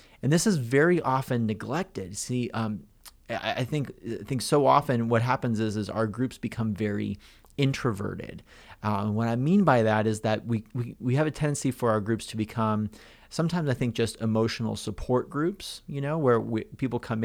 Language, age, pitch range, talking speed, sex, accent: English, 30-49, 105-125 Hz, 195 wpm, male, American